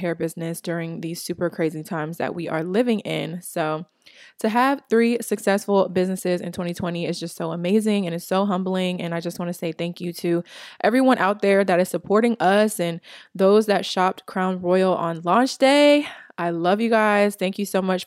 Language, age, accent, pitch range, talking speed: English, 20-39, American, 175-205 Hz, 205 wpm